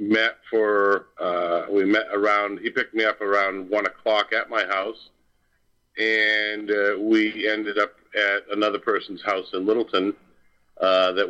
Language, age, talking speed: English, 50-69, 155 wpm